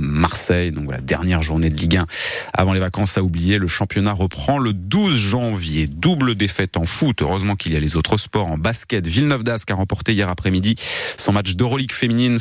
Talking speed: 205 wpm